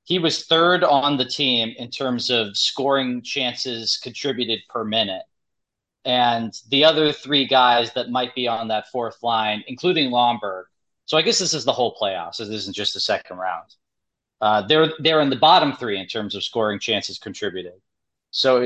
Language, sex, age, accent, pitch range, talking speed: English, male, 30-49, American, 115-140 Hz, 185 wpm